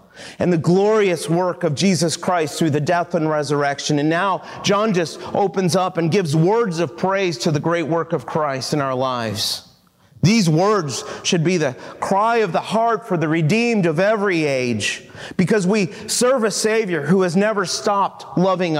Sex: male